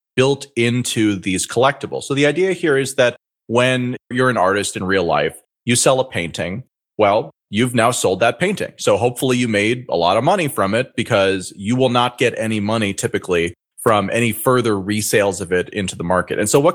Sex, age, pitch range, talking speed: male, 30-49, 100-130 Hz, 205 wpm